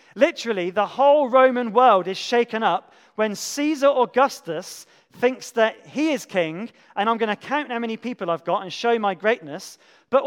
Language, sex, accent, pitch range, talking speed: English, male, British, 205-260 Hz, 180 wpm